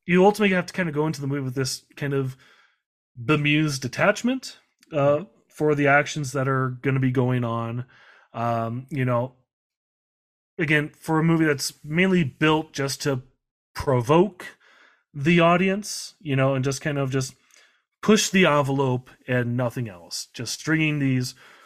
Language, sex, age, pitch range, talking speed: English, male, 30-49, 125-155 Hz, 160 wpm